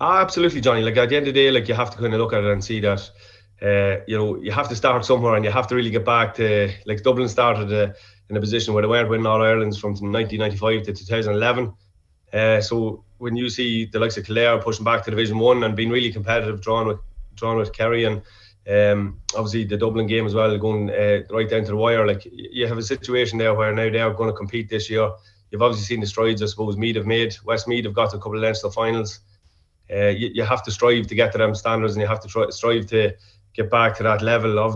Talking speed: 270 wpm